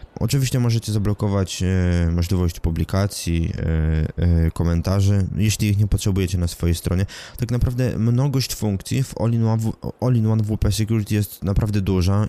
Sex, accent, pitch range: male, native, 95-115 Hz